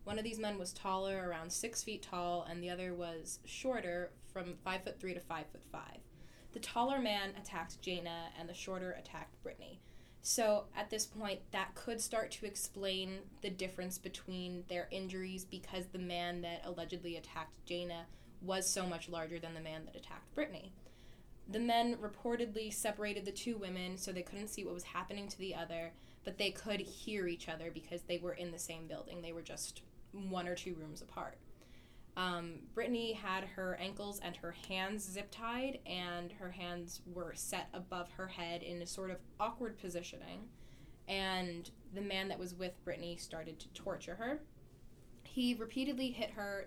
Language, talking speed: English, 180 wpm